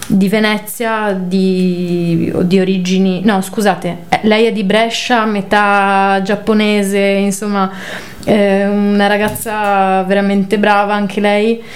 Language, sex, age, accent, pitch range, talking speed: Italian, female, 30-49, native, 190-220 Hz, 105 wpm